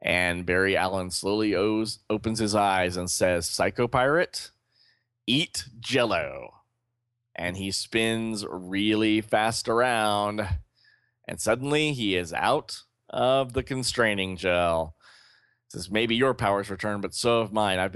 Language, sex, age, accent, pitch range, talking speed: English, male, 30-49, American, 95-115 Hz, 125 wpm